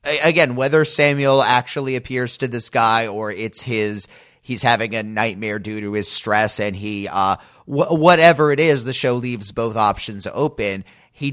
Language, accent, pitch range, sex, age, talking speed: English, American, 105-130 Hz, male, 30-49, 175 wpm